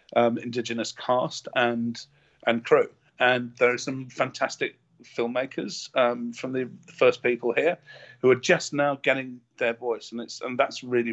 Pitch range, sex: 120-150 Hz, male